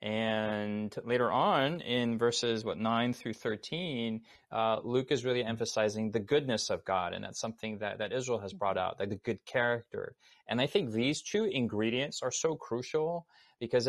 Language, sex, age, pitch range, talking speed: English, male, 30-49, 110-130 Hz, 175 wpm